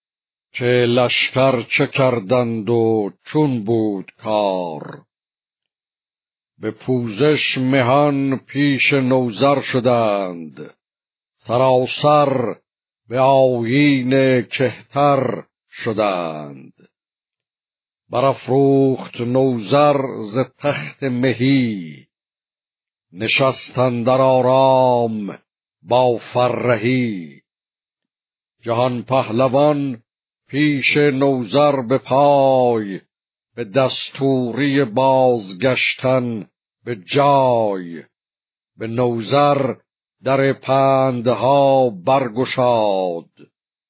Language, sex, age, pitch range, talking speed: Persian, male, 60-79, 120-135 Hz, 60 wpm